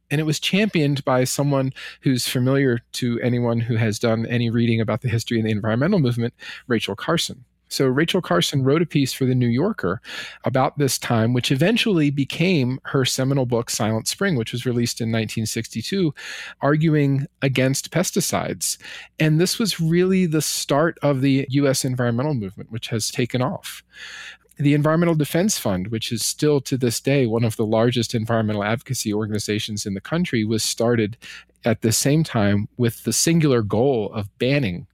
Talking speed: 170 wpm